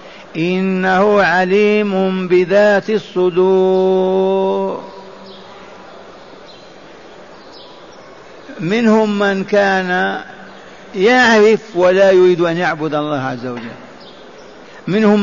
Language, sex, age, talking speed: Arabic, male, 50-69, 65 wpm